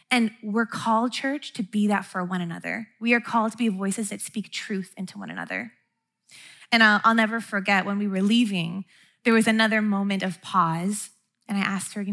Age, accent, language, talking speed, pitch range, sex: 20-39, American, English, 210 wpm, 195-230 Hz, female